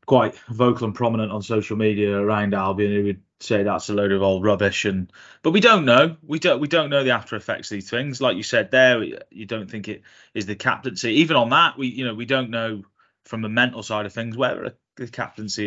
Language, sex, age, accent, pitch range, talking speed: English, male, 20-39, British, 105-120 Hz, 245 wpm